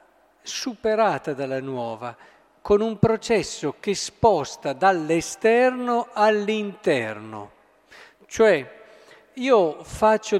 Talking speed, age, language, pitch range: 75 wpm, 50-69, Italian, 155-200 Hz